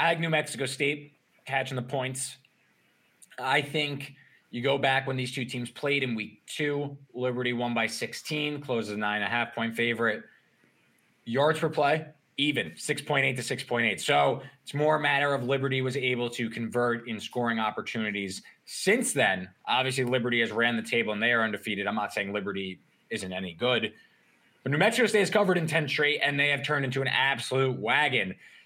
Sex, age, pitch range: male, 20-39, 120-145 Hz